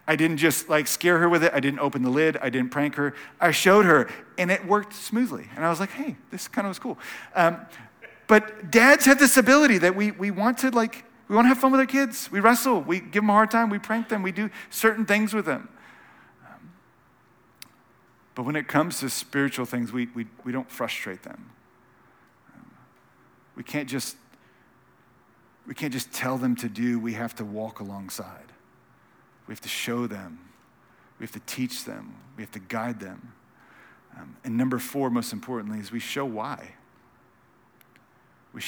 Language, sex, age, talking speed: English, male, 40-59, 195 wpm